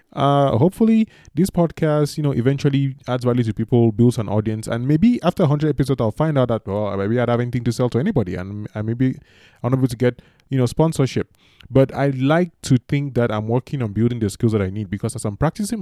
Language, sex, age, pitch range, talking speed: English, male, 20-39, 105-140 Hz, 235 wpm